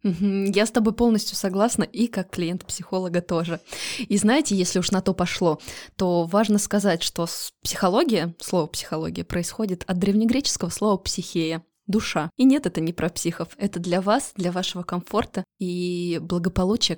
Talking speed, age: 160 wpm, 20-39